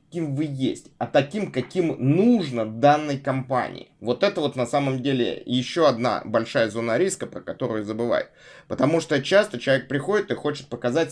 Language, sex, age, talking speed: Russian, male, 20-39, 160 wpm